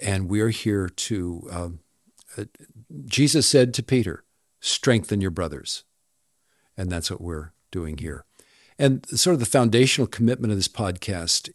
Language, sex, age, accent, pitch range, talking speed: English, male, 50-69, American, 95-130 Hz, 145 wpm